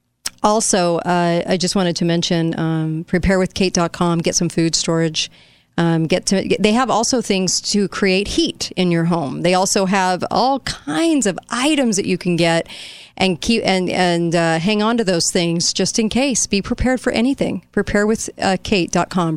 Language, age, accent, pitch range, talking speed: English, 40-59, American, 170-205 Hz, 180 wpm